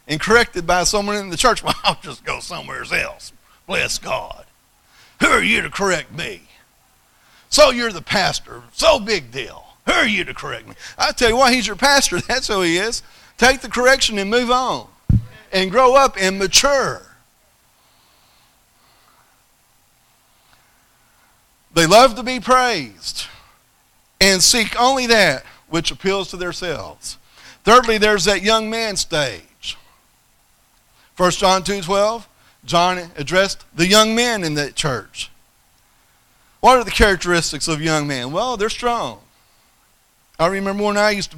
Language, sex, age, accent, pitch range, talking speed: English, male, 40-59, American, 170-235 Hz, 150 wpm